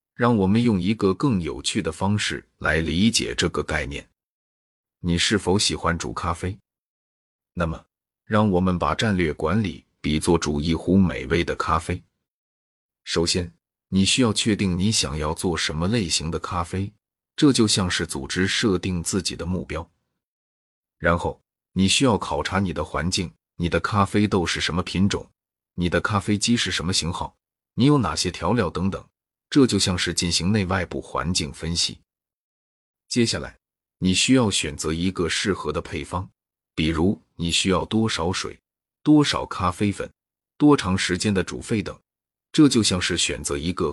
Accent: native